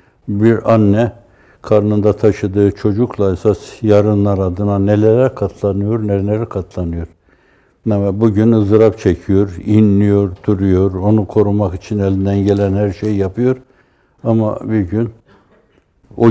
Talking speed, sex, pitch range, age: 105 wpm, male, 95-110 Hz, 60-79